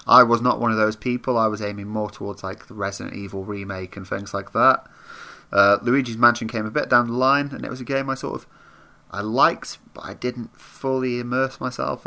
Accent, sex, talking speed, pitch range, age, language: British, male, 230 wpm, 105-130 Hz, 30-49, English